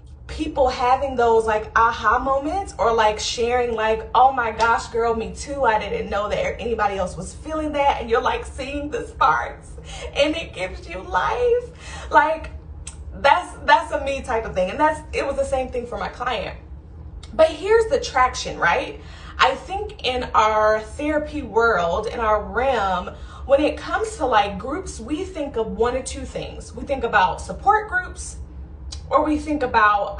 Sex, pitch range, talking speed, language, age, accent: female, 215-305 Hz, 180 wpm, English, 20-39, American